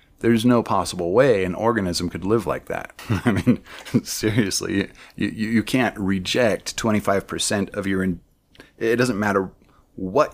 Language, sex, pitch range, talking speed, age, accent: English, male, 90-115 Hz, 150 wpm, 30-49, American